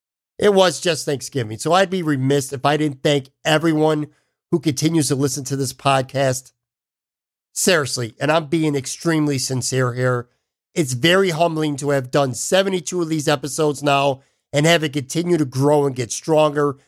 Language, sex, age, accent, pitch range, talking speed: English, male, 50-69, American, 140-170 Hz, 165 wpm